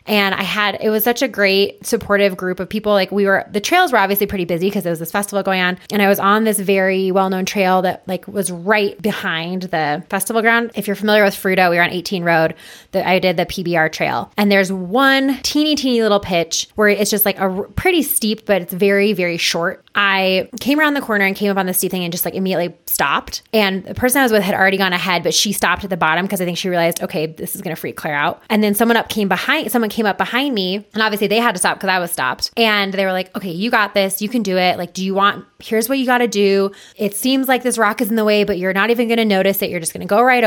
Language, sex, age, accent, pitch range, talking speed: English, female, 20-39, American, 190-225 Hz, 285 wpm